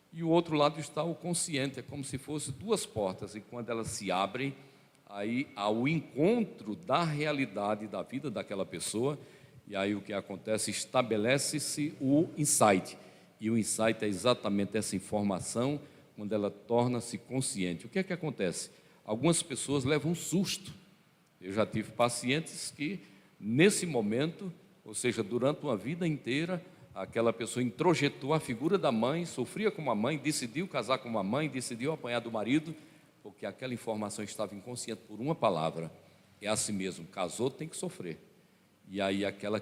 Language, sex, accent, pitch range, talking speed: Portuguese, male, Brazilian, 105-155 Hz, 165 wpm